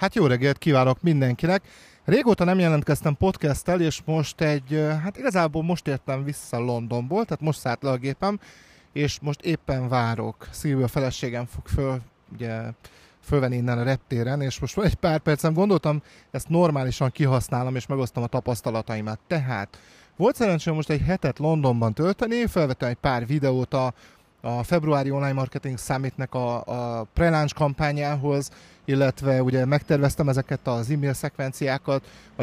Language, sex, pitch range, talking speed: Hungarian, male, 130-165 Hz, 140 wpm